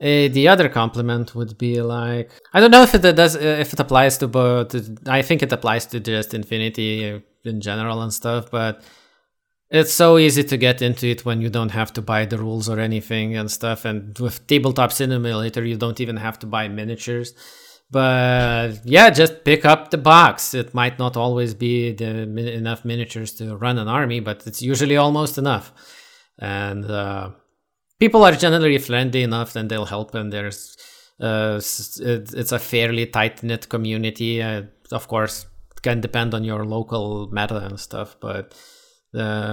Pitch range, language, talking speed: 110-130 Hz, English, 175 wpm